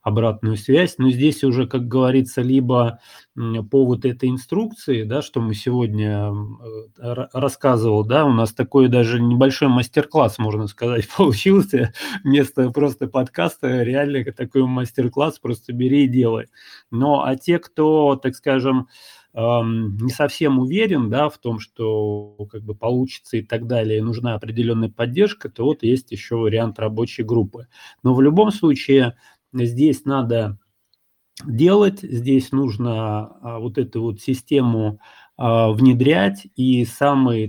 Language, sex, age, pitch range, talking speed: Russian, male, 30-49, 110-135 Hz, 135 wpm